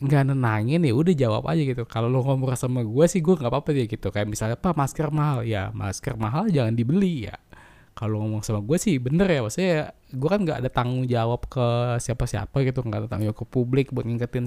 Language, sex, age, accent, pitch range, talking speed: Indonesian, male, 20-39, native, 125-165 Hz, 225 wpm